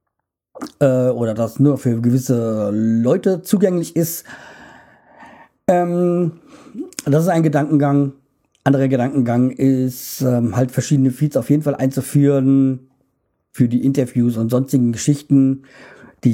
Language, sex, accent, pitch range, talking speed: German, male, German, 125-150 Hz, 115 wpm